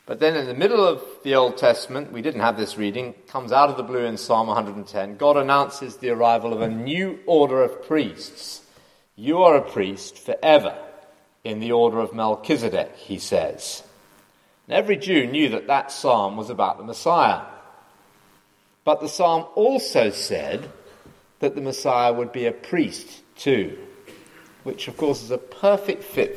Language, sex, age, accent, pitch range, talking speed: English, male, 40-59, British, 110-165 Hz, 170 wpm